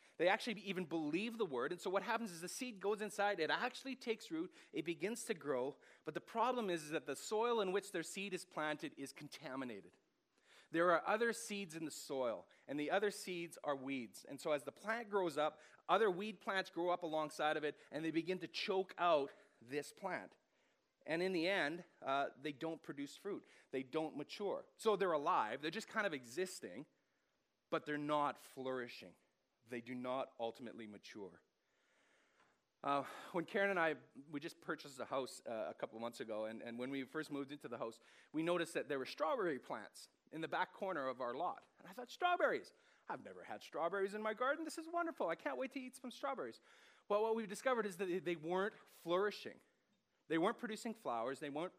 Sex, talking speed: male, 205 wpm